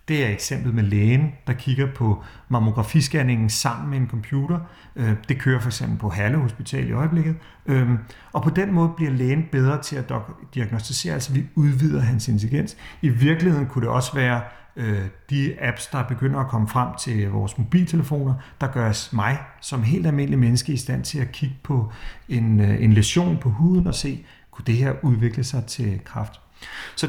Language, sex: Danish, male